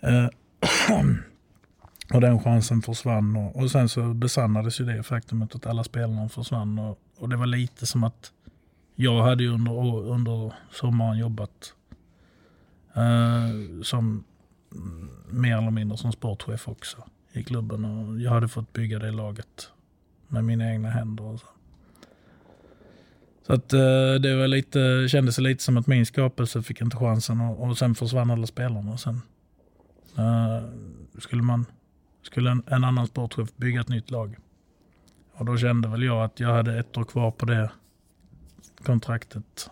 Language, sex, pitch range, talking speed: Swedish, male, 110-120 Hz, 160 wpm